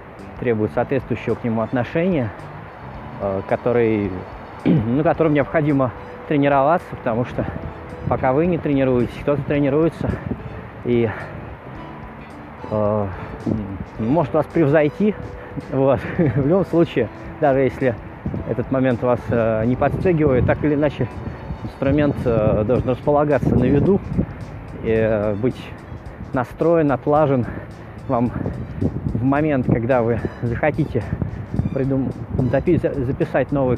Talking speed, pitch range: 100 wpm, 110-145 Hz